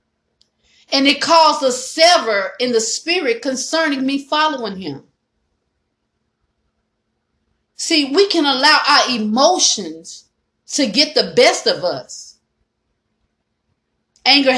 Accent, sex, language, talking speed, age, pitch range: American, female, English, 105 wpm, 40-59, 260-315 Hz